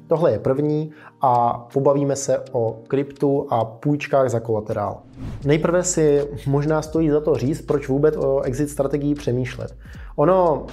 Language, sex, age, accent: Czech, male, 20-39, native